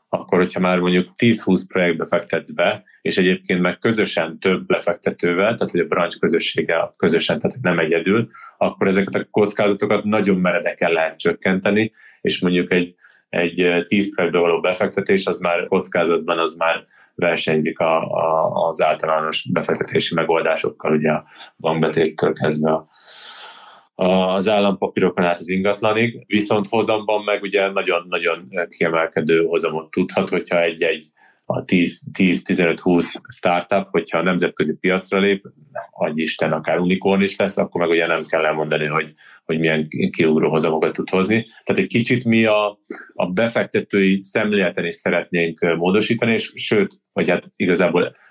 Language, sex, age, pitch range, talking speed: Hungarian, male, 30-49, 85-100 Hz, 135 wpm